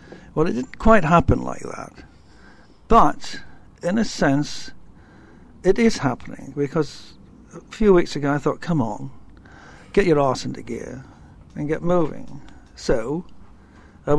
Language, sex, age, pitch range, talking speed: English, male, 60-79, 135-160 Hz, 140 wpm